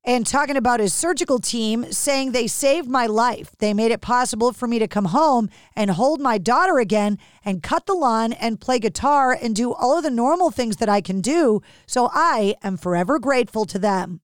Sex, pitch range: female, 225-285 Hz